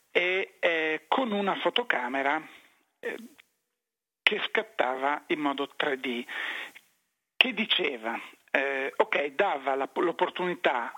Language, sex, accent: Italian, male, native